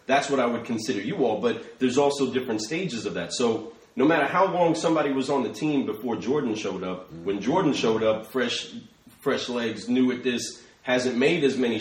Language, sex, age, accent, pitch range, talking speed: English, male, 30-49, American, 110-140 Hz, 215 wpm